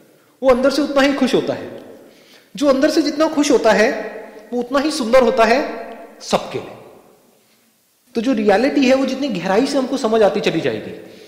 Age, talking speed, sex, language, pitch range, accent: 30-49, 190 wpm, male, Hindi, 180-270 Hz, native